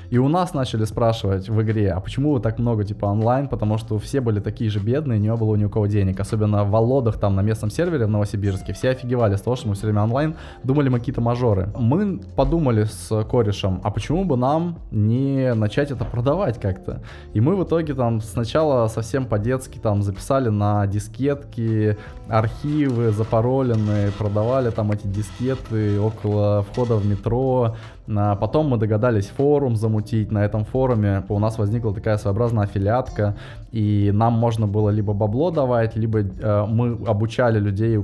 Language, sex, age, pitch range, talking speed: Russian, male, 20-39, 105-120 Hz, 175 wpm